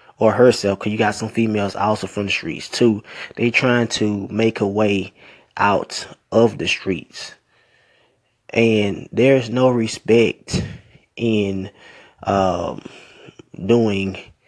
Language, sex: English, male